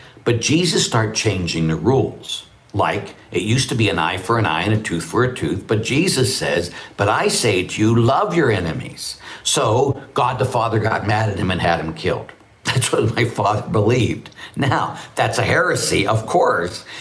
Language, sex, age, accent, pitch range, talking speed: English, male, 60-79, American, 90-130 Hz, 200 wpm